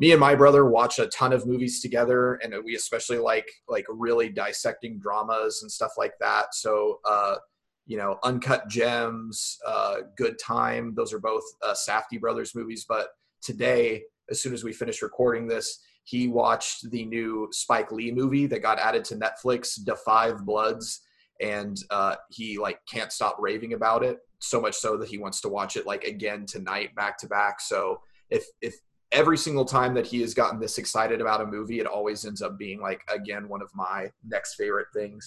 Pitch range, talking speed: 115-140 Hz, 190 wpm